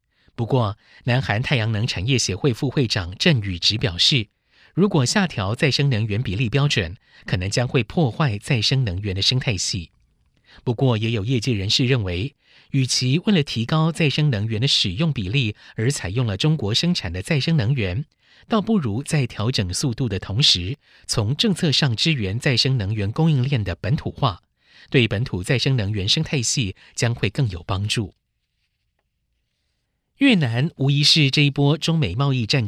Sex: male